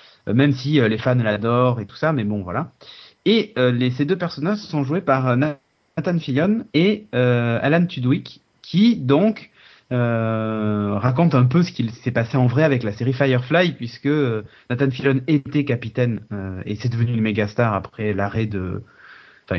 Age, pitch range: 30-49, 115-145 Hz